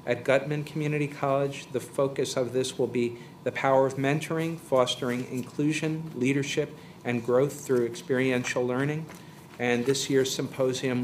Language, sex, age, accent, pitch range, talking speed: English, male, 50-69, American, 120-140 Hz, 140 wpm